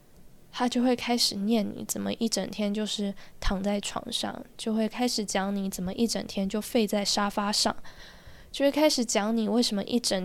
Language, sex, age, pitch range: Chinese, female, 10-29, 195-230 Hz